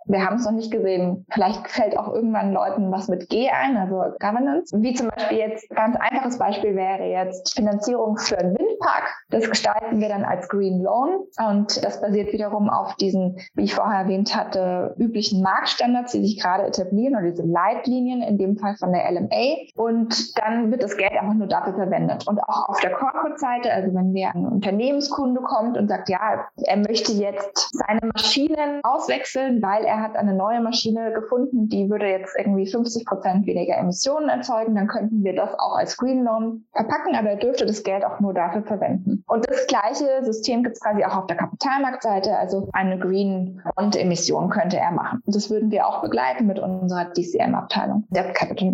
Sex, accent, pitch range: female, German, 195-245 Hz